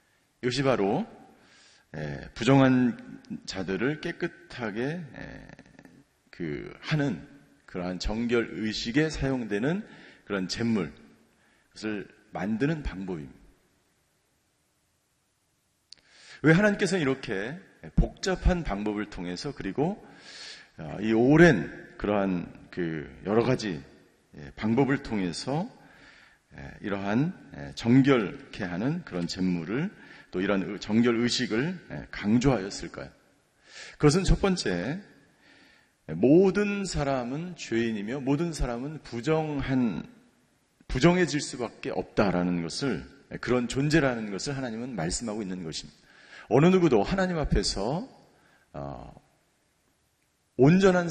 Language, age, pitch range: Korean, 40-59, 105-155 Hz